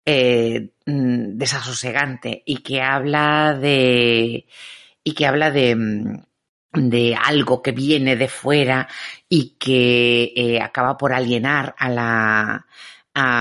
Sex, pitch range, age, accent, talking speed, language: female, 115-135 Hz, 40-59, Spanish, 110 wpm, Spanish